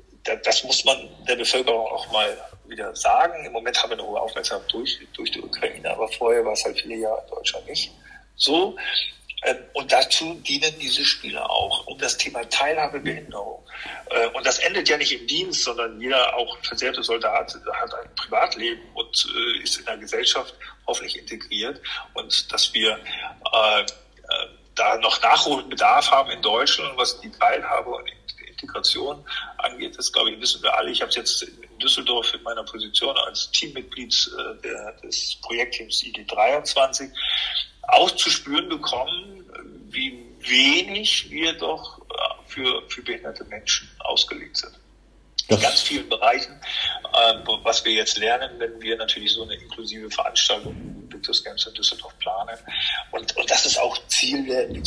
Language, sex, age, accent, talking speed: German, male, 50-69, German, 155 wpm